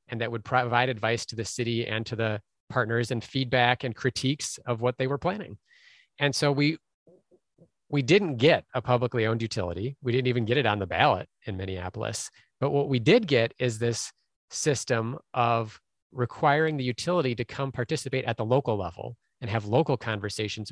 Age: 30-49